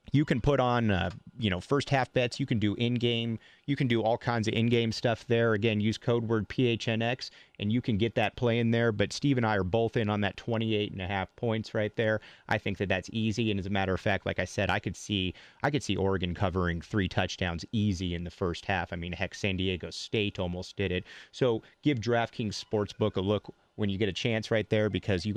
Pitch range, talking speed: 95-125 Hz, 255 wpm